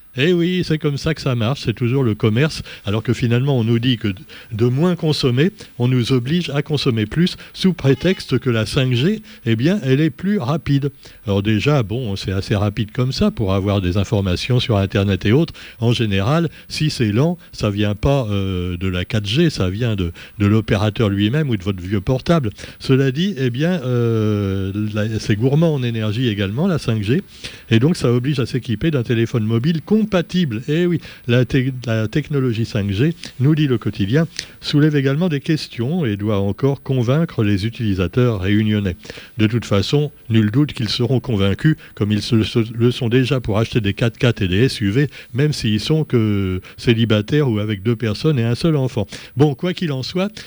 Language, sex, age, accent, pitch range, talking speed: French, male, 60-79, French, 110-145 Hz, 195 wpm